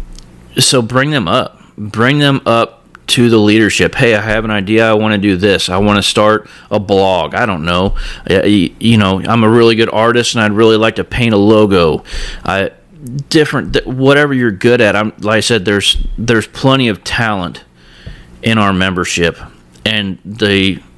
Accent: American